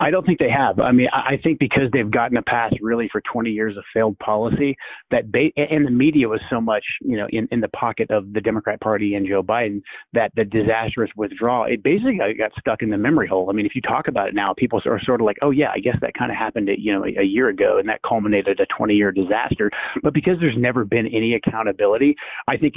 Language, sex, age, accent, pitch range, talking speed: English, male, 30-49, American, 105-125 Hz, 255 wpm